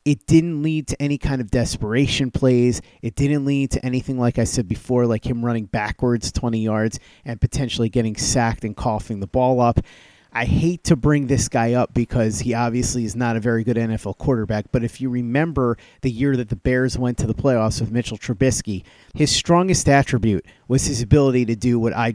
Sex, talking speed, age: male, 205 wpm, 30-49